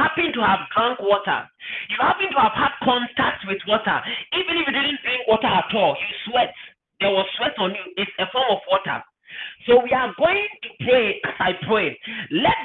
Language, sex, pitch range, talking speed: English, male, 225-310 Hz, 195 wpm